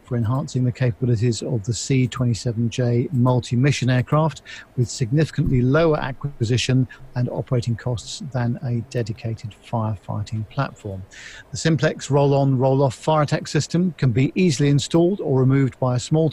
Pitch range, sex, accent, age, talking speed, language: 120-145 Hz, male, British, 50-69, 130 wpm, English